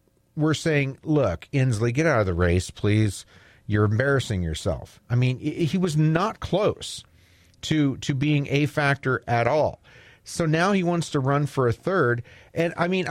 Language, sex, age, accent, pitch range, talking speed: English, male, 40-59, American, 110-155 Hz, 180 wpm